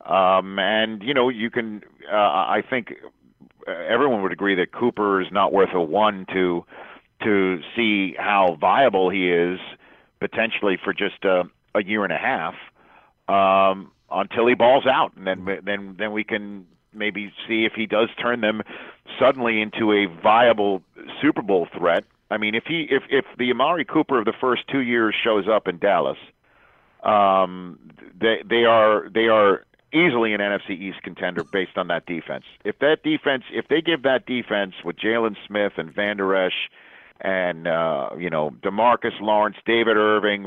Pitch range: 95-115 Hz